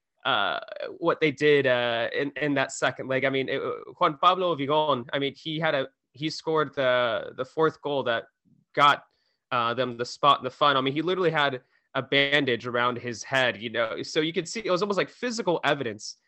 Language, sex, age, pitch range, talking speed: English, male, 20-39, 130-170 Hz, 215 wpm